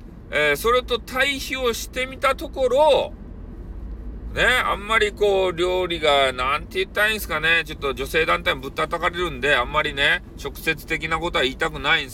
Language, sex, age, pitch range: Japanese, male, 40-59, 110-180 Hz